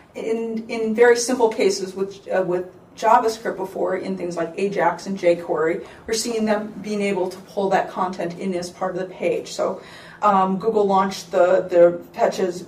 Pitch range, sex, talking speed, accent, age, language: 180-215 Hz, female, 175 wpm, American, 40-59, English